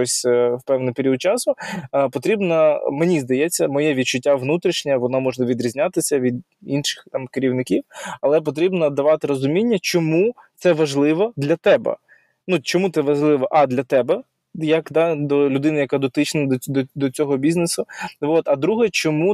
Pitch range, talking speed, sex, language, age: 130-160 Hz, 145 wpm, male, Ukrainian, 20-39